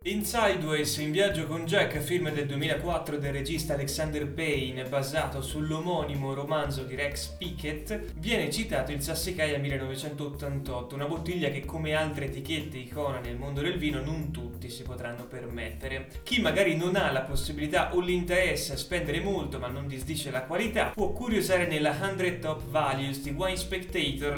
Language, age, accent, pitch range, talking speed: Italian, 20-39, native, 135-170 Hz, 160 wpm